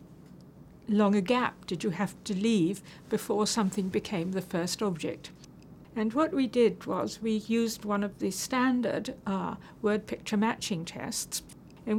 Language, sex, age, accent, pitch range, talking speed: English, female, 60-79, British, 190-240 Hz, 155 wpm